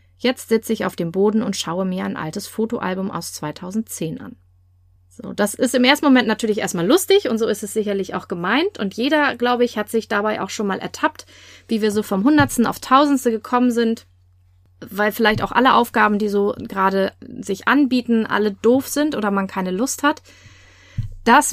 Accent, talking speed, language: German, 195 wpm, German